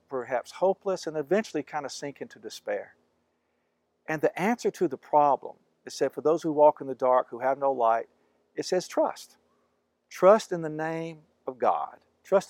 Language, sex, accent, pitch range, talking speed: English, male, American, 120-165 Hz, 180 wpm